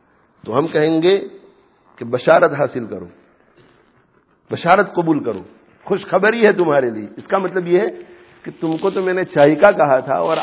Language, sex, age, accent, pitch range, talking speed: English, male, 50-69, Indian, 180-245 Hz, 175 wpm